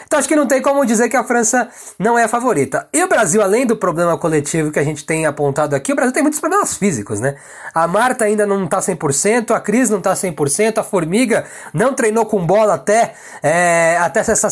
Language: Portuguese